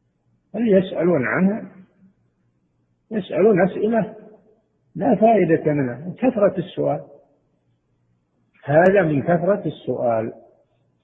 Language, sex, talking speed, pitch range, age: Arabic, male, 80 wpm, 140-185 Hz, 50-69